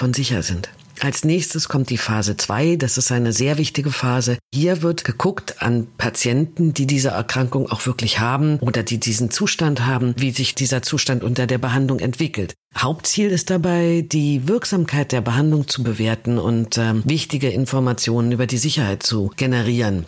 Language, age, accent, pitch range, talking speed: German, 50-69, German, 120-145 Hz, 165 wpm